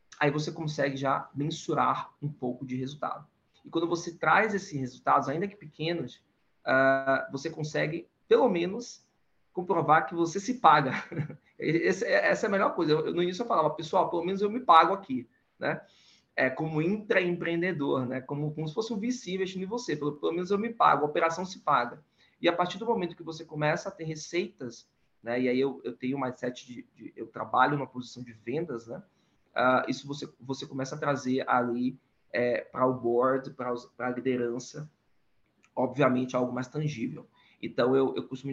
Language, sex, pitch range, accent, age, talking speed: Portuguese, male, 130-160 Hz, Brazilian, 20-39, 185 wpm